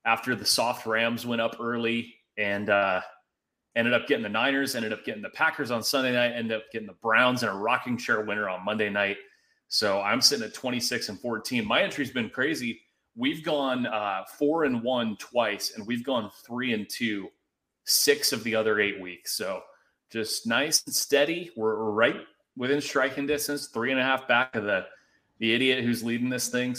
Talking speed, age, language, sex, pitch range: 200 wpm, 30-49, English, male, 110-135 Hz